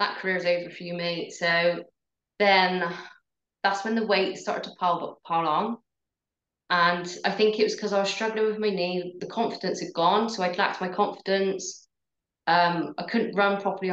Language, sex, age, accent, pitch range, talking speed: English, female, 20-39, British, 170-200 Hz, 200 wpm